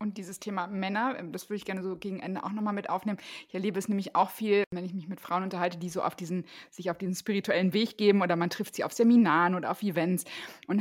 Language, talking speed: German, 260 wpm